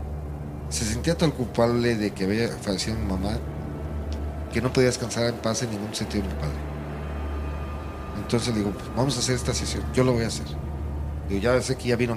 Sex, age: male, 50-69